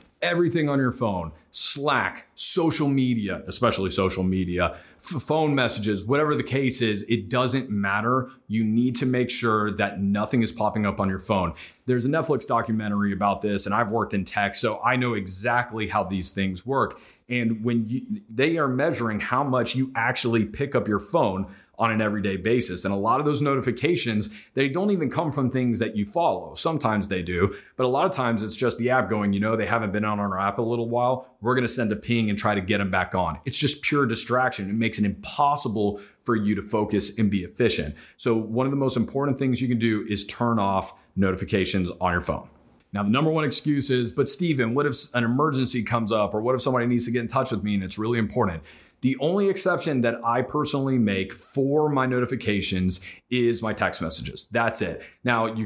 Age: 30-49